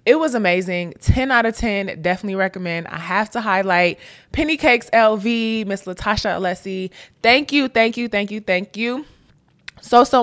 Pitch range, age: 180-230 Hz, 20-39